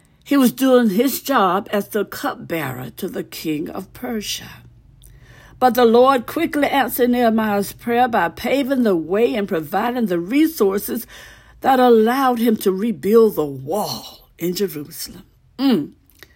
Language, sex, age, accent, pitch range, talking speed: English, female, 60-79, American, 190-260 Hz, 140 wpm